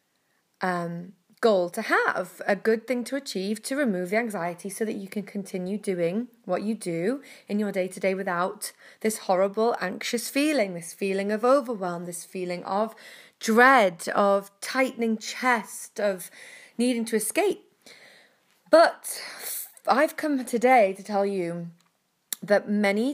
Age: 20-39